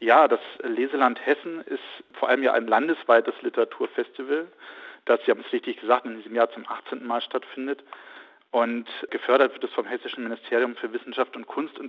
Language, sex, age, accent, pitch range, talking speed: German, male, 40-59, German, 115-180 Hz, 180 wpm